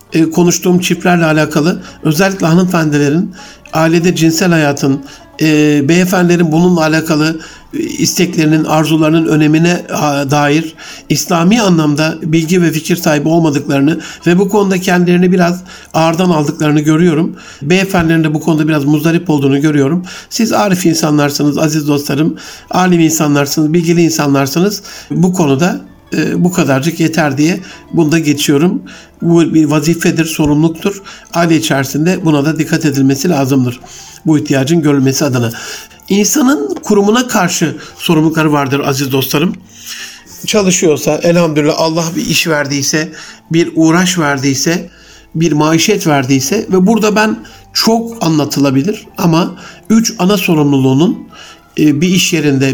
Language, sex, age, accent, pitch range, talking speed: Turkish, male, 60-79, native, 150-180 Hz, 115 wpm